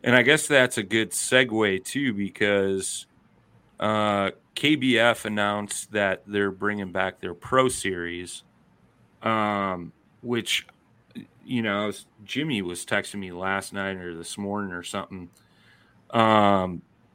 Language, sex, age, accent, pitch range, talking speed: English, male, 30-49, American, 95-115 Hz, 120 wpm